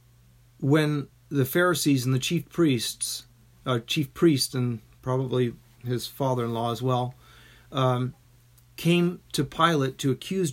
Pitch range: 120-150 Hz